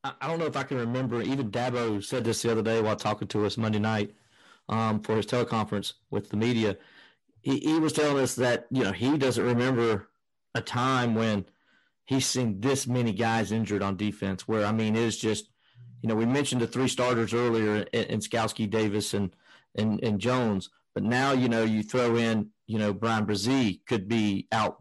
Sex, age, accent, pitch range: male, 40-59, American, 105-125 Hz